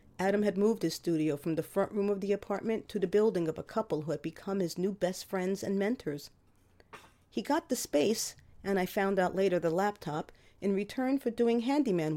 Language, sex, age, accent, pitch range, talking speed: English, female, 40-59, American, 155-215 Hz, 210 wpm